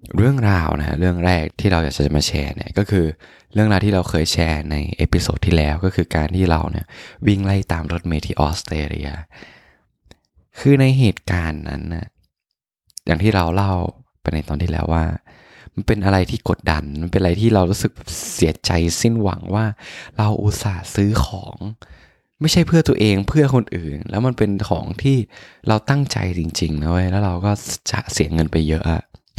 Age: 20-39